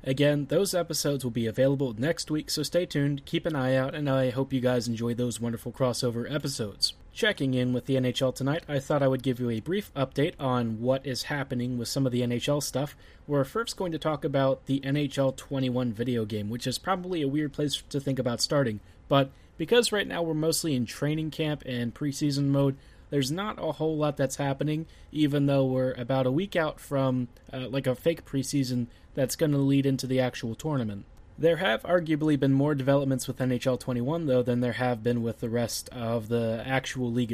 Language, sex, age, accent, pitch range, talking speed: English, male, 20-39, American, 125-145 Hz, 210 wpm